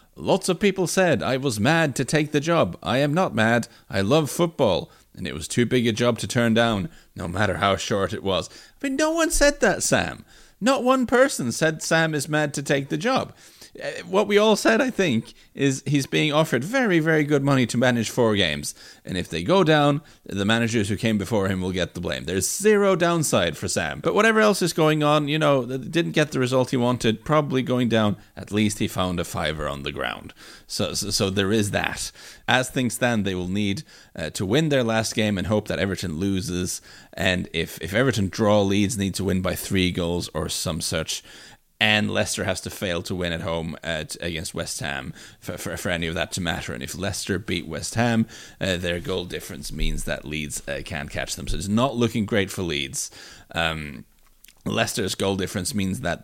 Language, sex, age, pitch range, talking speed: English, male, 30-49, 95-145 Hz, 220 wpm